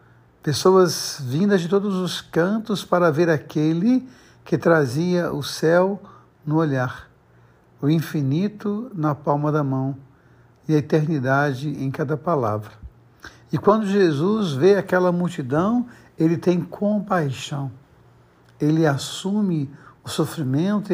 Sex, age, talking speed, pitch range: male, 60-79, 115 wpm, 140-180 Hz